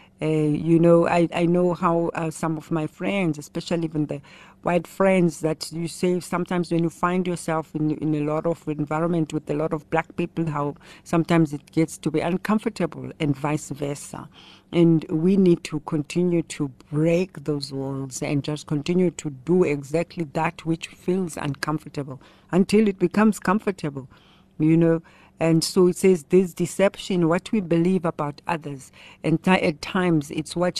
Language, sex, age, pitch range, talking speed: English, female, 60-79, 150-175 Hz, 175 wpm